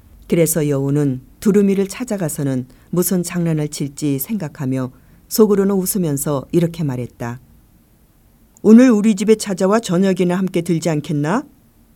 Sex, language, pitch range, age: female, Korean, 135-185 Hz, 50-69